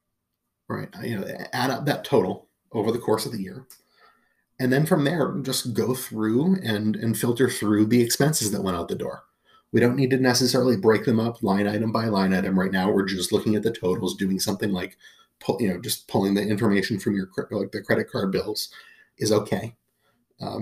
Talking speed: 210 wpm